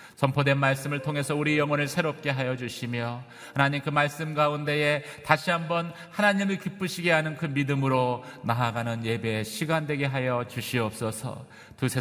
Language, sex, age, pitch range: Korean, male, 30-49, 95-130 Hz